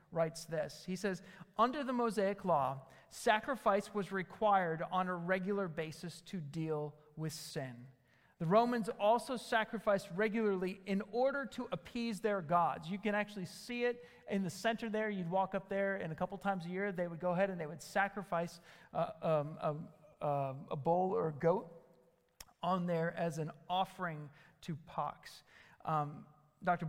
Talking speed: 165 wpm